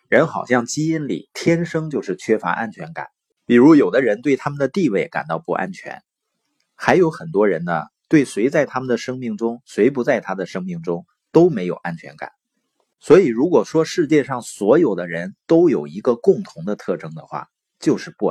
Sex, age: male, 30-49